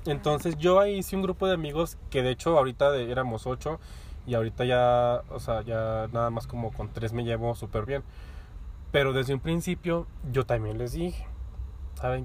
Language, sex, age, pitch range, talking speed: English, male, 20-39, 110-145 Hz, 190 wpm